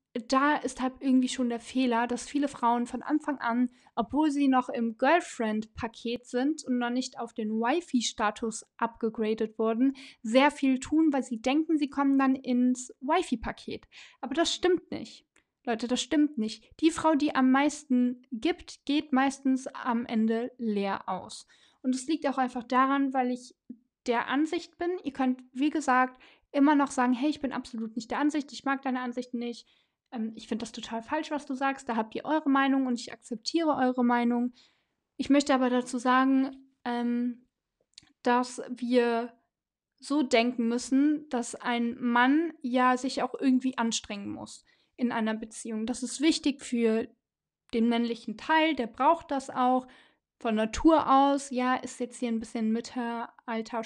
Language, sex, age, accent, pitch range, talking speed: German, female, 10-29, German, 235-275 Hz, 170 wpm